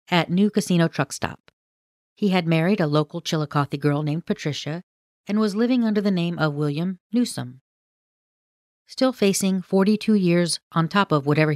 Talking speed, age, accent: 160 wpm, 40-59, American